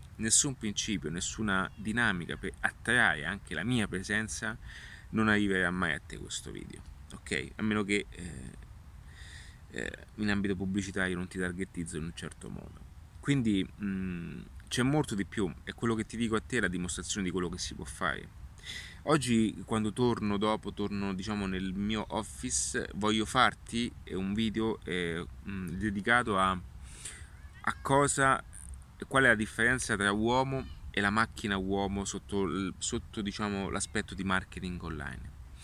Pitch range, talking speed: 85-110 Hz, 150 wpm